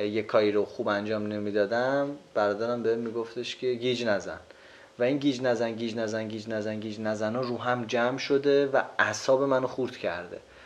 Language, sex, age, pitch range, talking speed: Persian, male, 30-49, 105-135 Hz, 175 wpm